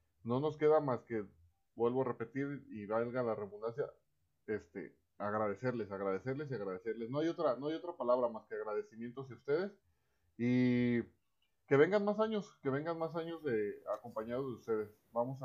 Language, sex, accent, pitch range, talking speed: Spanish, male, Mexican, 110-145 Hz, 165 wpm